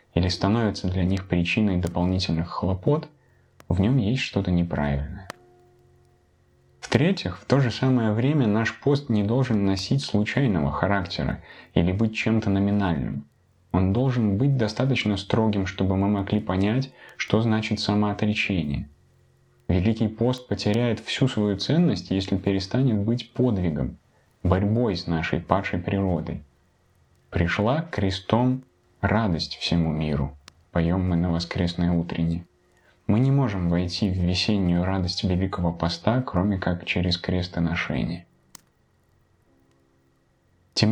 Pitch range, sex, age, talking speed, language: 90-115 Hz, male, 20-39, 115 wpm, Russian